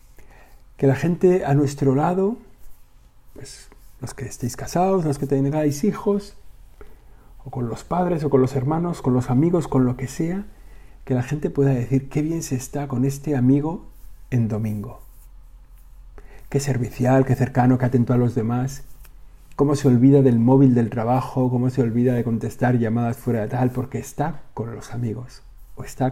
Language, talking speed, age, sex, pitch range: Spanish, 175 wpm, 50-69, male, 115-140 Hz